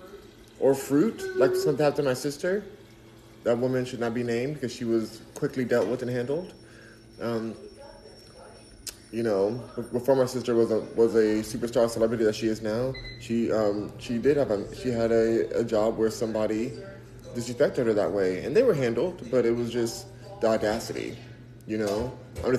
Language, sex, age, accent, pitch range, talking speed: English, male, 20-39, American, 115-125 Hz, 185 wpm